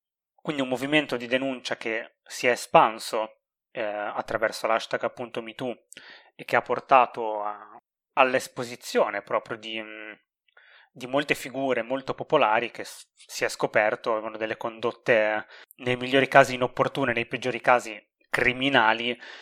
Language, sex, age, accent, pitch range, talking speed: Italian, male, 20-39, native, 115-135 Hz, 135 wpm